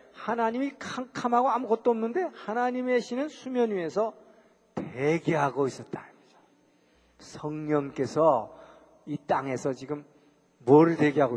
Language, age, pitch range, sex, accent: Korean, 40-59, 165-225 Hz, male, native